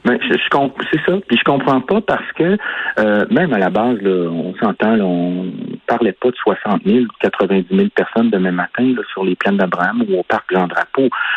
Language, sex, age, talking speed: French, male, 50-69, 210 wpm